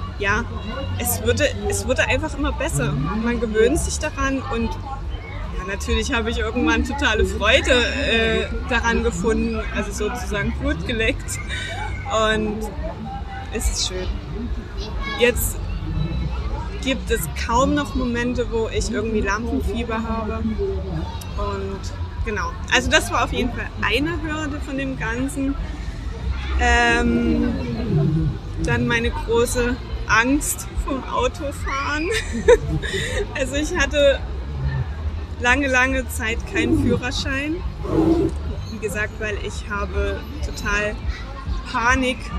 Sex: female